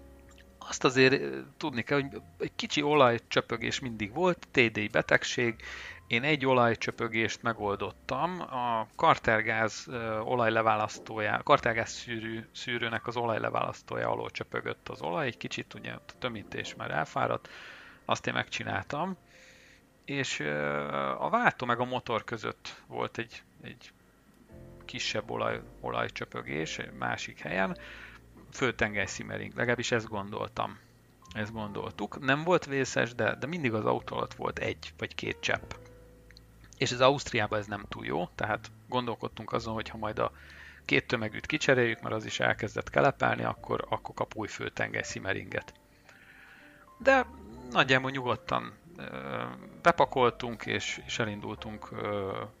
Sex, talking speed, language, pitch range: male, 120 wpm, Hungarian, 105-125 Hz